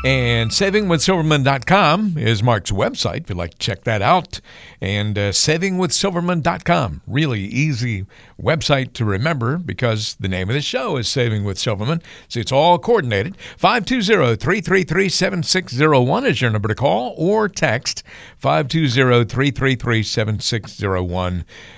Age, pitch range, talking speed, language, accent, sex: 60-79, 110-145 Hz, 125 wpm, English, American, male